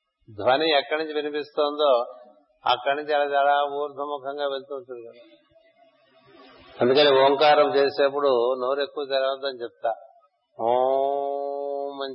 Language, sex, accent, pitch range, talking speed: Telugu, male, native, 130-150 Hz, 100 wpm